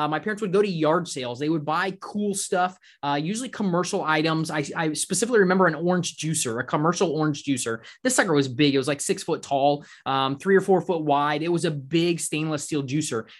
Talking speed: 230 wpm